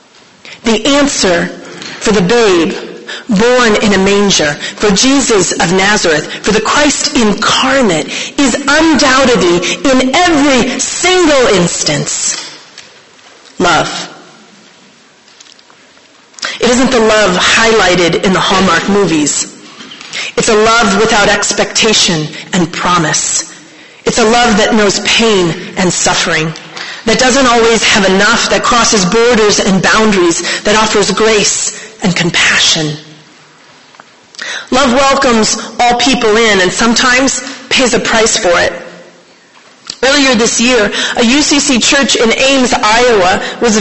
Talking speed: 115 wpm